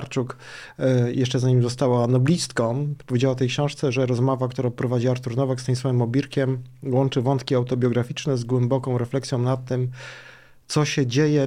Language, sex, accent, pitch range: Polish, male, native, 125-140 Hz